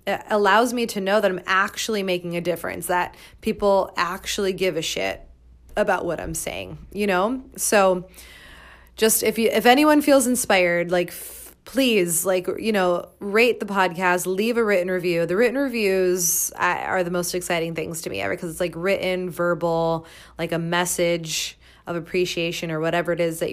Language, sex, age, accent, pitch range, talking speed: English, female, 20-39, American, 170-205 Hz, 175 wpm